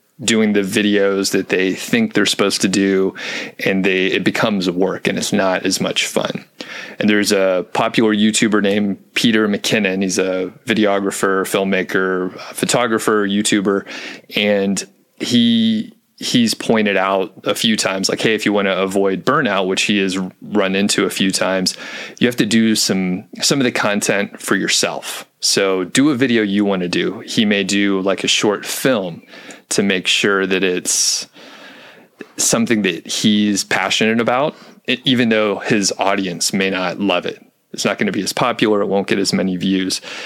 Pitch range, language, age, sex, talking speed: 95-110 Hz, English, 30-49, male, 175 wpm